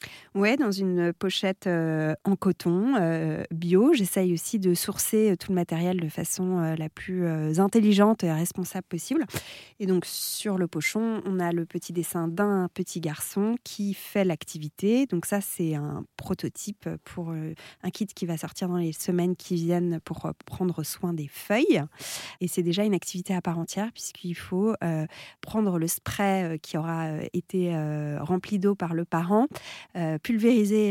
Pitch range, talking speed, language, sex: 170-205 Hz, 175 wpm, French, female